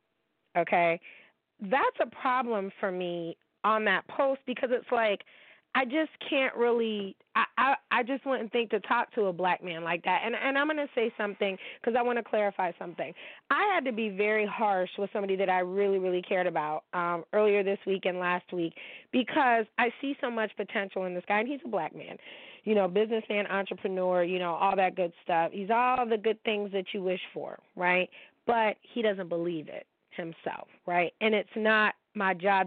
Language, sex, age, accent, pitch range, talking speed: English, female, 30-49, American, 185-230 Hz, 200 wpm